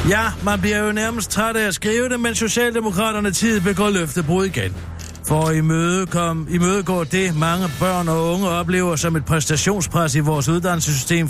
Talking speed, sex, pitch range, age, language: 175 wpm, male, 115-175 Hz, 60-79, Danish